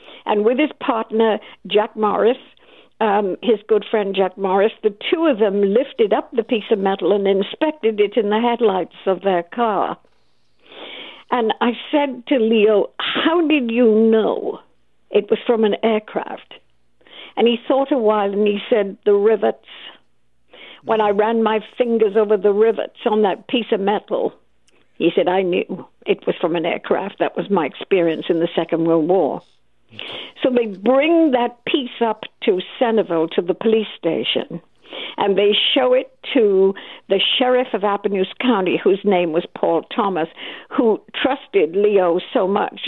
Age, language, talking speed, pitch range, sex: 60-79, English, 165 wpm, 205-250 Hz, female